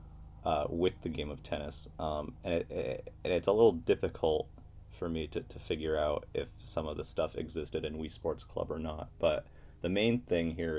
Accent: American